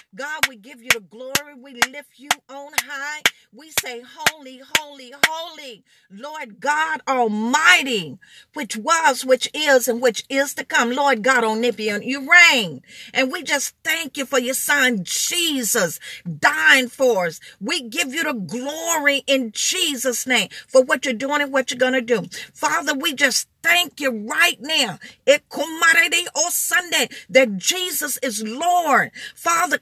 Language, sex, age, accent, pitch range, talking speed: English, female, 40-59, American, 255-330 Hz, 155 wpm